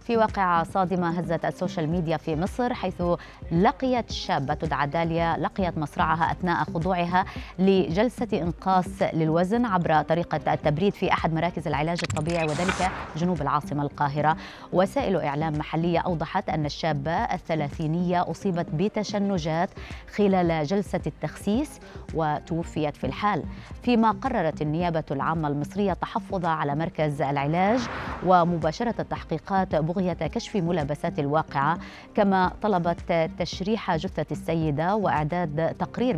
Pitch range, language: 155-185 Hz, Arabic